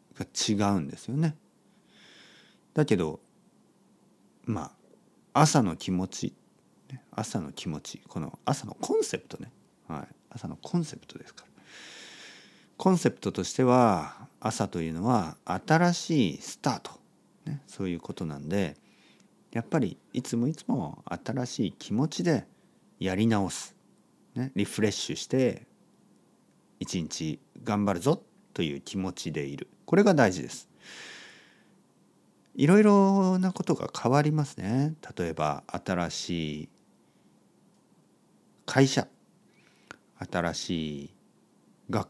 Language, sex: Japanese, male